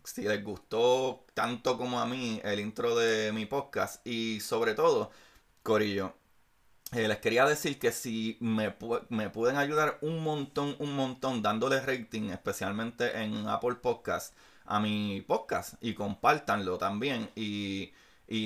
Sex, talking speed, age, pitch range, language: male, 145 wpm, 30-49, 105-135 Hz, Spanish